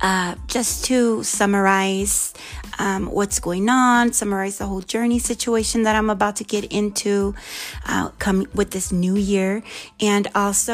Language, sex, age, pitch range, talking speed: English, female, 20-39, 185-225 Hz, 150 wpm